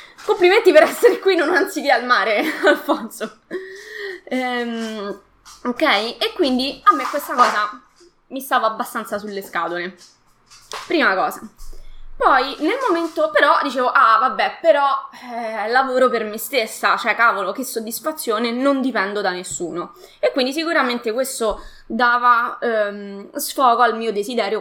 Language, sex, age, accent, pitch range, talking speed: Italian, female, 20-39, native, 205-285 Hz, 135 wpm